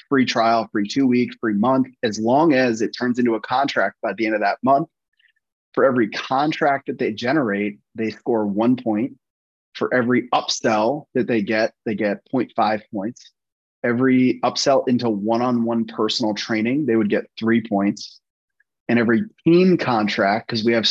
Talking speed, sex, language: 170 wpm, male, English